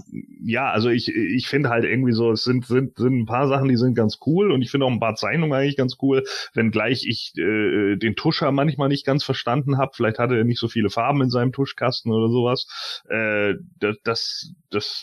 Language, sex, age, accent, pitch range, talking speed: German, male, 30-49, German, 105-130 Hz, 215 wpm